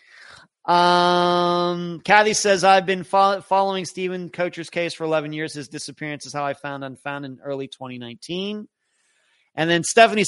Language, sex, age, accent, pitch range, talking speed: English, male, 30-49, American, 145-185 Hz, 145 wpm